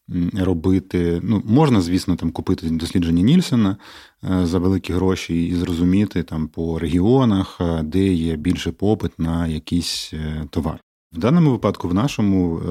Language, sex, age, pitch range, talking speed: Ukrainian, male, 30-49, 85-105 Hz, 130 wpm